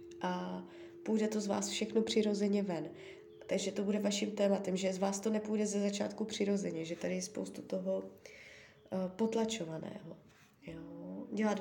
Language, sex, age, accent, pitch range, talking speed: Czech, female, 20-39, native, 185-225 Hz, 145 wpm